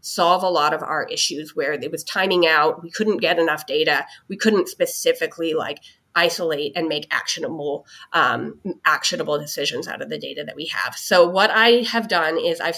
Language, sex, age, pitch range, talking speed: English, female, 30-49, 165-235 Hz, 190 wpm